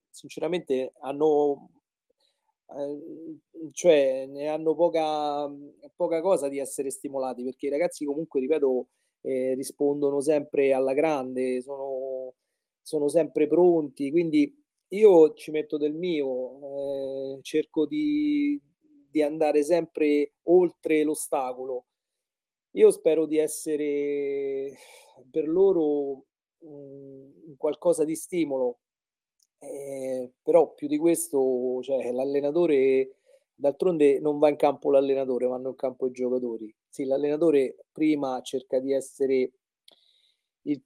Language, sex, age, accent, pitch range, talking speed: Italian, male, 40-59, native, 135-165 Hz, 110 wpm